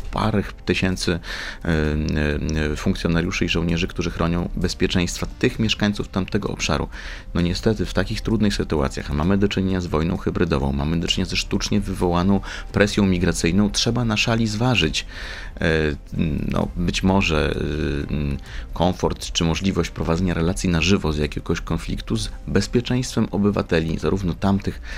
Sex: male